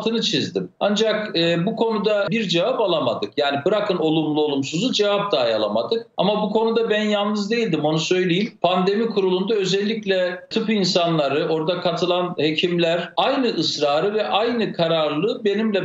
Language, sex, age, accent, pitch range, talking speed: Turkish, male, 50-69, native, 180-230 Hz, 140 wpm